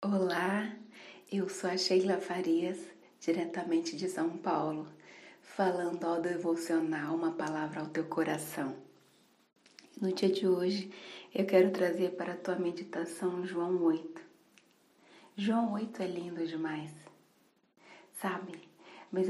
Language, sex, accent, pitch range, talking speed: Portuguese, female, Brazilian, 170-205 Hz, 120 wpm